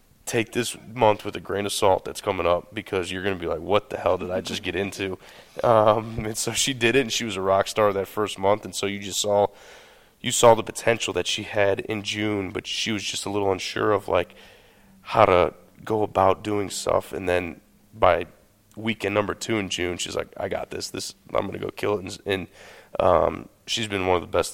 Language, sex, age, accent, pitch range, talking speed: English, male, 20-39, American, 95-110 Hz, 240 wpm